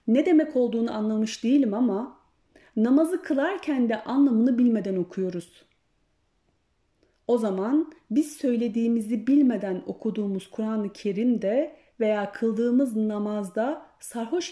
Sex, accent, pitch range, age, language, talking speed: female, native, 200-270 Hz, 30-49, Turkish, 100 wpm